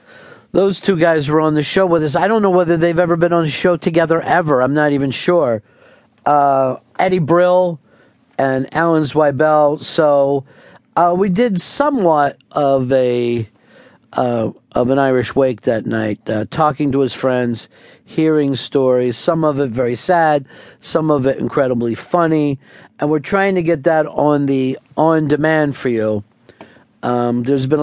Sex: male